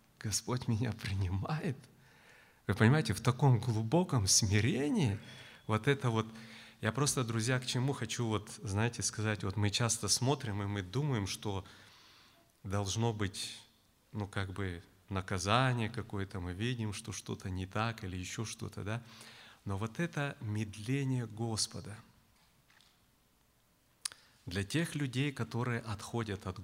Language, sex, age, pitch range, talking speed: Russian, male, 30-49, 100-120 Hz, 130 wpm